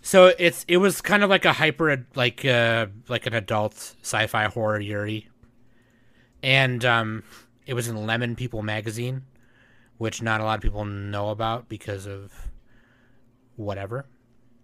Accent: American